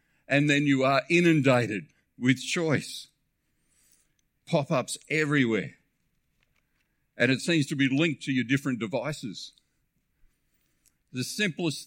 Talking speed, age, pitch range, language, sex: 105 wpm, 50-69, 115-145 Hz, English, male